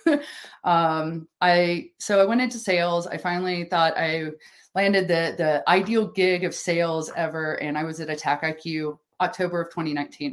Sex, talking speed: female, 165 wpm